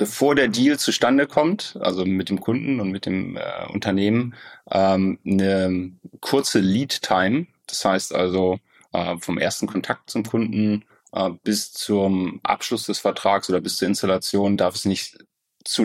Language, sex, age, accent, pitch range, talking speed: German, male, 30-49, German, 95-110 Hz, 155 wpm